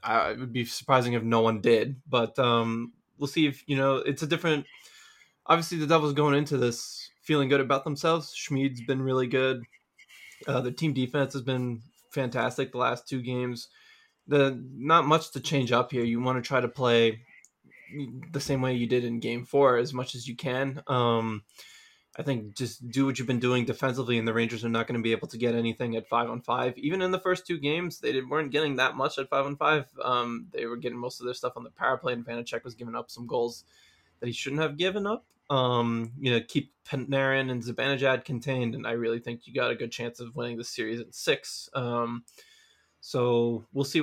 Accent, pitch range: American, 120-140 Hz